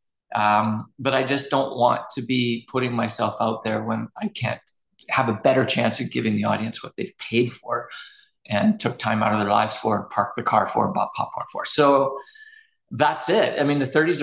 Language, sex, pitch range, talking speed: English, male, 115-140 Hz, 210 wpm